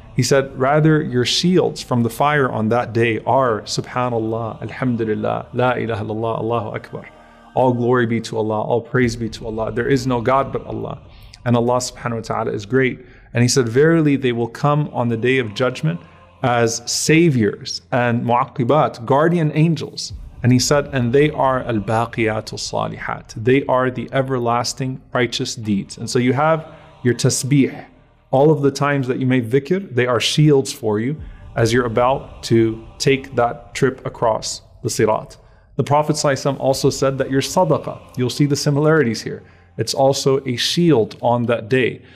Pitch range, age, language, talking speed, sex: 115-145 Hz, 30-49, English, 175 wpm, male